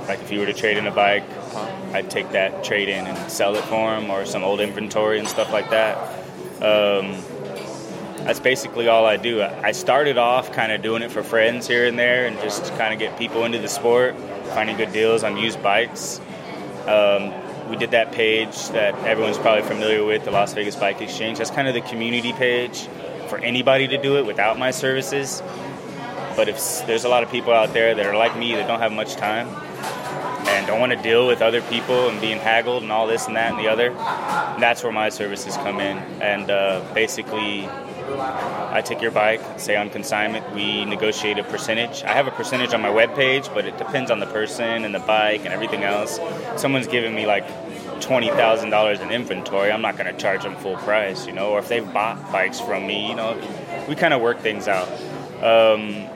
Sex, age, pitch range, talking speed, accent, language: male, 20-39, 105-120 Hz, 210 wpm, American, English